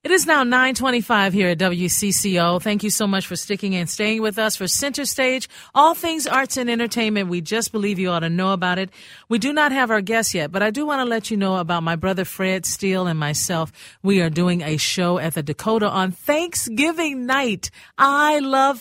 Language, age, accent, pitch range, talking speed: English, 40-59, American, 170-220 Hz, 220 wpm